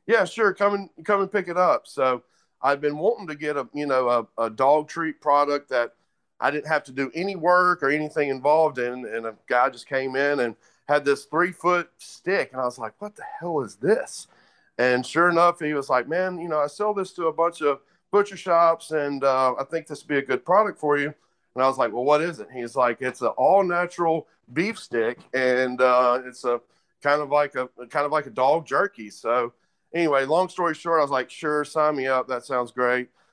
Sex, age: male, 40-59